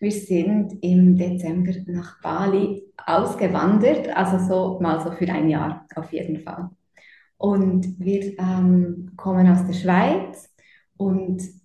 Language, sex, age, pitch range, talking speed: German, female, 20-39, 175-195 Hz, 125 wpm